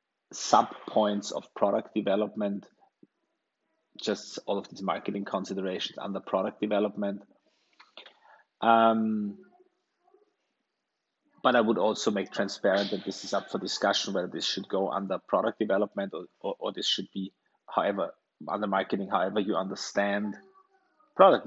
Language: English